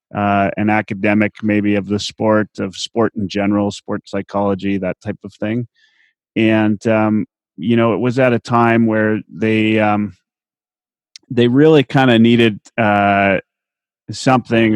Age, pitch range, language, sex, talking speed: 30-49, 100-115 Hz, English, male, 145 wpm